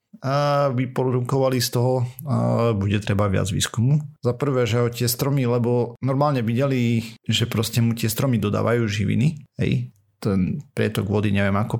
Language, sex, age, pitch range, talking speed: Slovak, male, 40-59, 110-125 Hz, 155 wpm